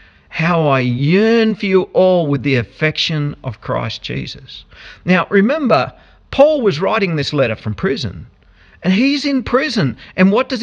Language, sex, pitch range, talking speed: English, male, 110-180 Hz, 160 wpm